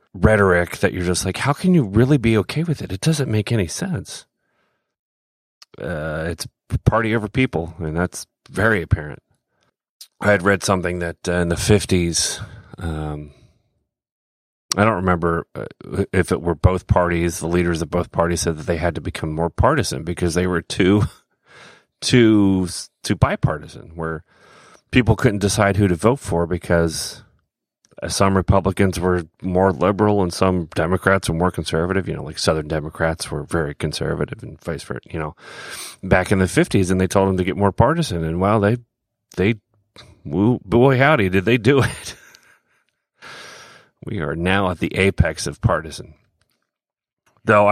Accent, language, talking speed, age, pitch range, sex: American, English, 165 wpm, 30-49, 85-105 Hz, male